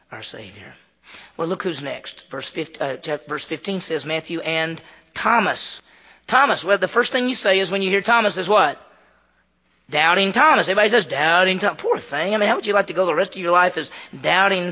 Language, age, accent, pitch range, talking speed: English, 40-59, American, 170-225 Hz, 205 wpm